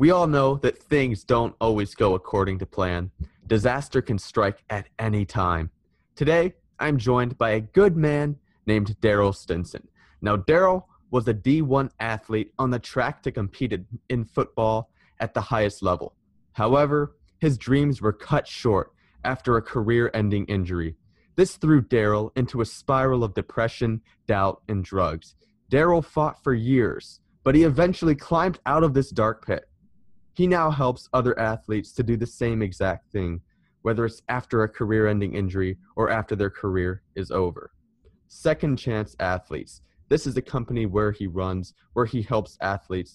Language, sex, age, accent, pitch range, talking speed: English, male, 20-39, American, 100-135 Hz, 160 wpm